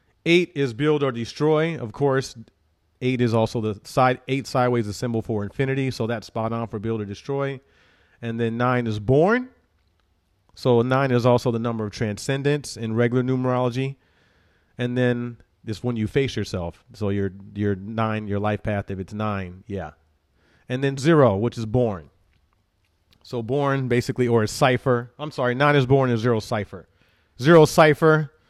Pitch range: 95-135 Hz